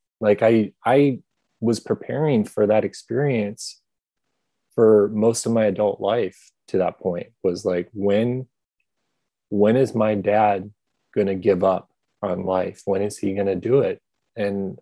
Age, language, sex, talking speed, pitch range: 30-49, English, male, 160 wpm, 100-110 Hz